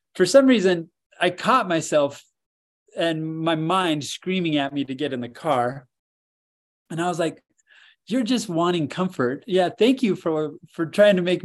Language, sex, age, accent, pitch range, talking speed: English, male, 20-39, American, 140-180 Hz, 175 wpm